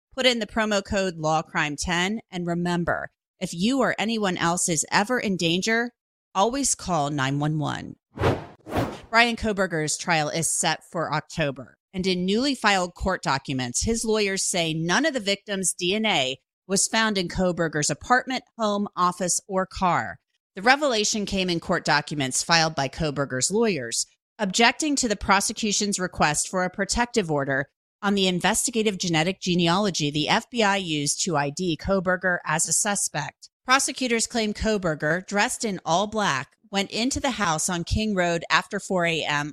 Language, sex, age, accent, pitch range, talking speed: English, female, 30-49, American, 160-210 Hz, 150 wpm